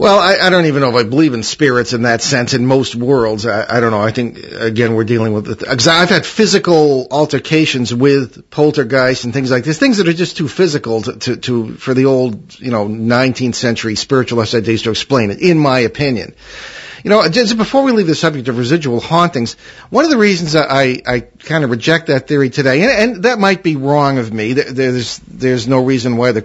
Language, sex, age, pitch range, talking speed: English, male, 50-69, 120-160 Hz, 220 wpm